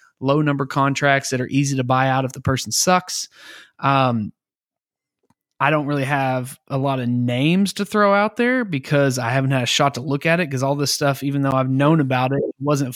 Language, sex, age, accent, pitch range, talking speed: English, male, 20-39, American, 125-140 Hz, 220 wpm